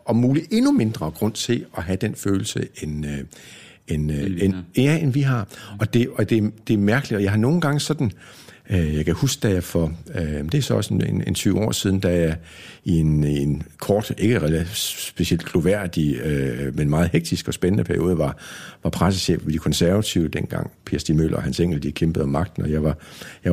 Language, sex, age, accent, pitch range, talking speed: Danish, male, 60-79, native, 80-120 Hz, 215 wpm